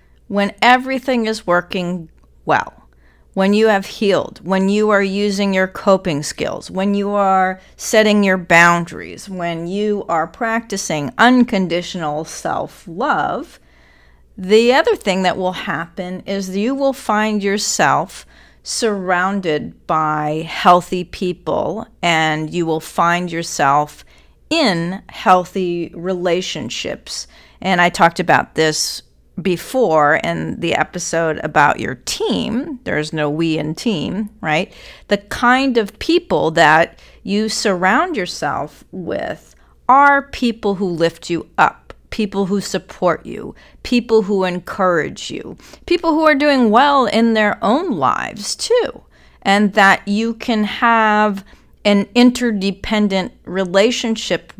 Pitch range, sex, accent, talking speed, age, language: 170-220 Hz, female, American, 120 wpm, 40-59, English